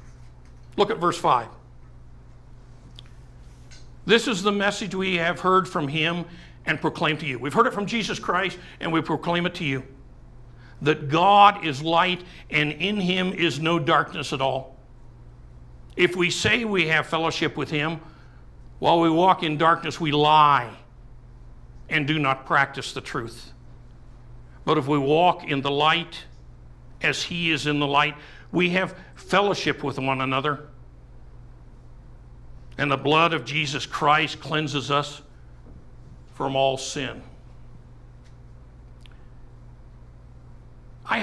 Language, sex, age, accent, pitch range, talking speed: English, male, 60-79, American, 120-170 Hz, 135 wpm